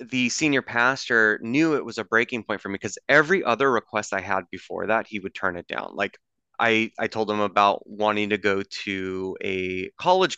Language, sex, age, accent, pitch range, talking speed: English, male, 20-39, American, 100-125 Hz, 210 wpm